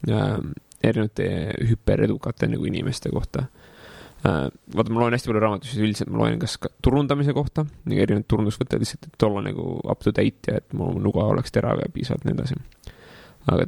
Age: 20-39